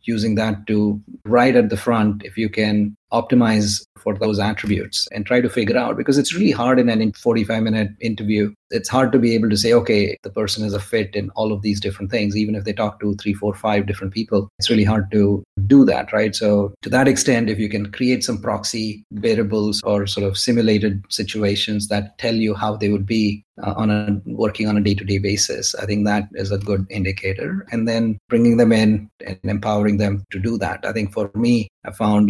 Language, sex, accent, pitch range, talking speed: English, male, Indian, 100-110 Hz, 220 wpm